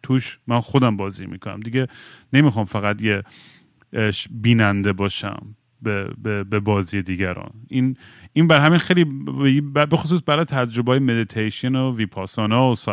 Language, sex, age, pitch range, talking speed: Persian, male, 30-49, 105-140 Hz, 130 wpm